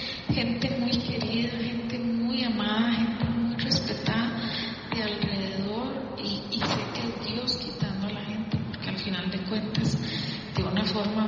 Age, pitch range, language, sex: 30-49, 195-215 Hz, Spanish, female